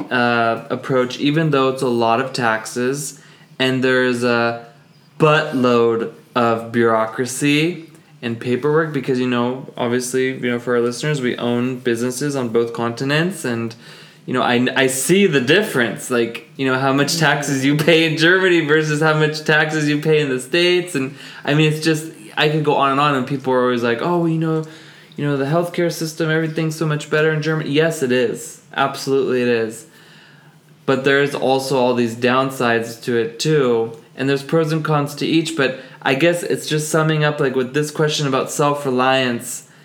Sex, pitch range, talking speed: male, 125-155 Hz, 185 wpm